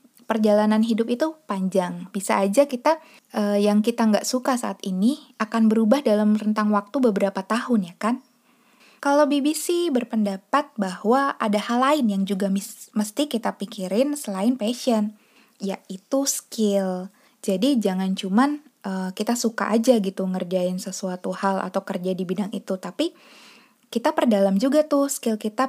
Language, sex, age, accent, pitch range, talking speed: Indonesian, female, 20-39, native, 200-255 Hz, 145 wpm